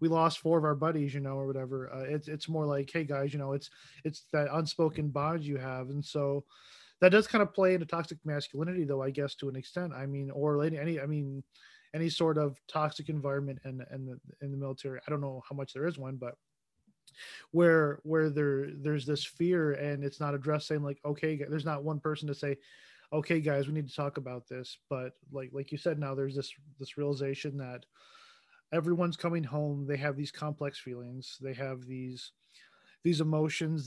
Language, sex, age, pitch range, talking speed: English, male, 20-39, 140-155 Hz, 215 wpm